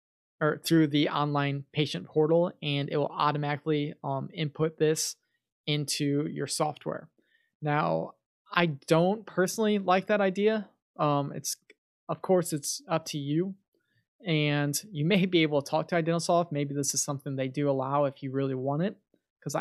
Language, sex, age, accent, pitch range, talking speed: English, male, 20-39, American, 140-160 Hz, 160 wpm